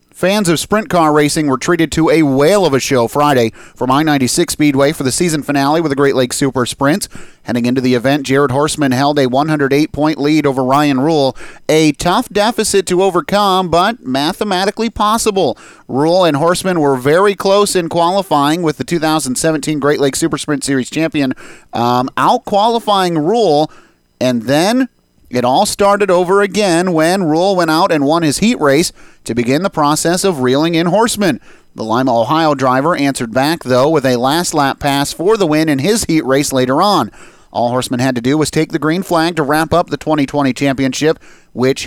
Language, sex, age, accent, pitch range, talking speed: English, male, 30-49, American, 140-175 Hz, 190 wpm